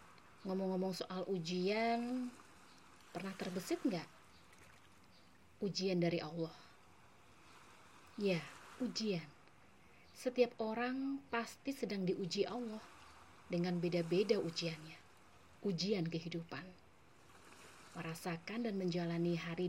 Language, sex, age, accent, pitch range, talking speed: Indonesian, female, 30-49, native, 170-225 Hz, 80 wpm